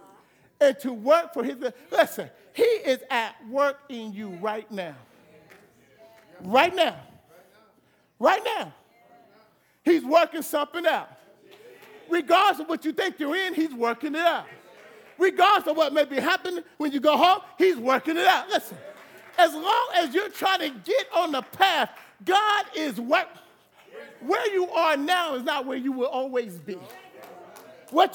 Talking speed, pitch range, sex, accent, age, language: 155 wpm, 265-370 Hz, male, American, 50-69, English